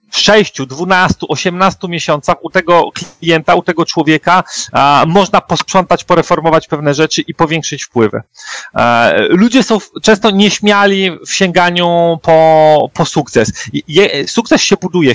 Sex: male